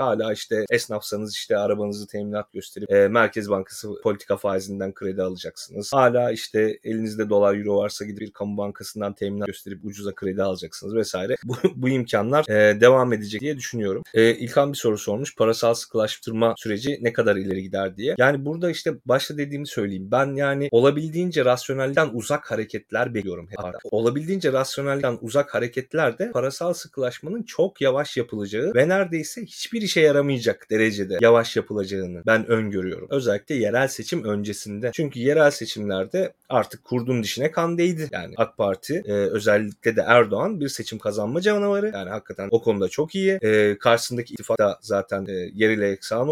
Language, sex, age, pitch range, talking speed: Turkish, male, 30-49, 105-145 Hz, 155 wpm